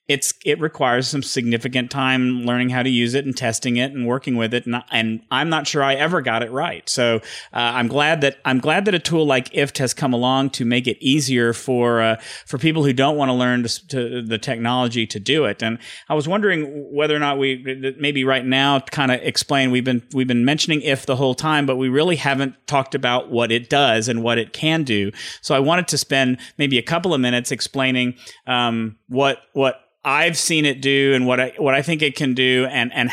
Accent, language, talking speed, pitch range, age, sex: American, English, 235 wpm, 125-150 Hz, 40-59, male